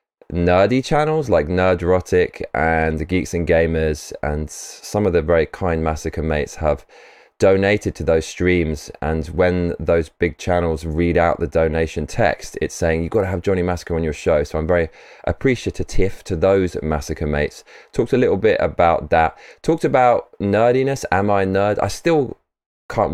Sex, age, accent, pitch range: male, 20-39, British, 80-115 Hz